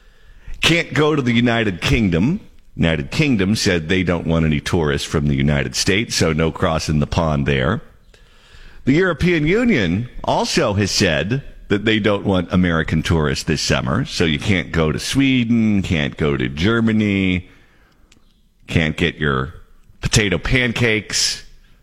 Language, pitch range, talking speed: English, 85-130 Hz, 145 wpm